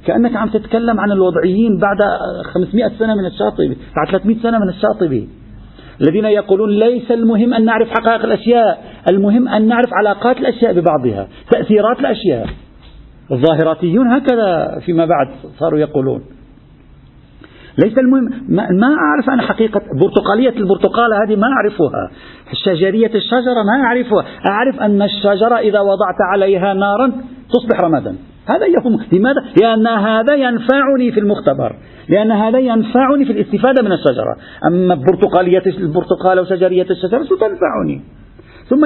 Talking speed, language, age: 130 wpm, Arabic, 50-69